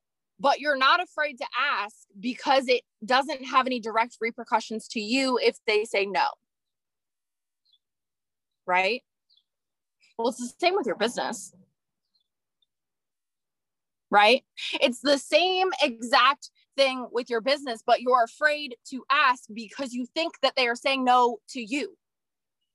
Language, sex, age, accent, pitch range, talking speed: English, female, 20-39, American, 245-320 Hz, 135 wpm